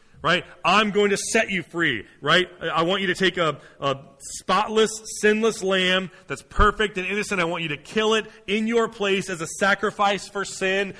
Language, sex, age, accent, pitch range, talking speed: English, male, 30-49, American, 170-200 Hz, 195 wpm